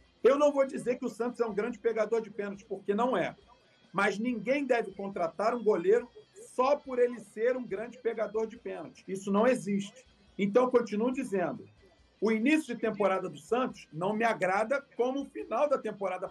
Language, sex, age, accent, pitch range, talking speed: Portuguese, male, 50-69, Brazilian, 205-265 Hz, 190 wpm